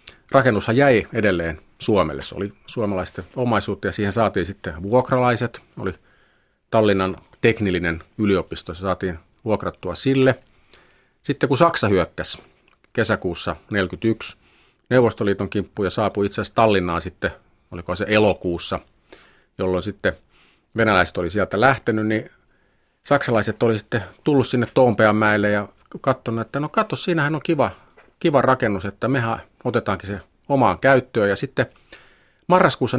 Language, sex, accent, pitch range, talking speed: Finnish, male, native, 95-130 Hz, 125 wpm